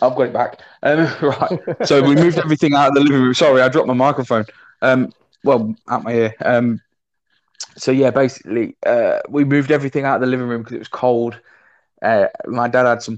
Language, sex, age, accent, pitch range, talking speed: English, male, 20-39, British, 115-135 Hz, 215 wpm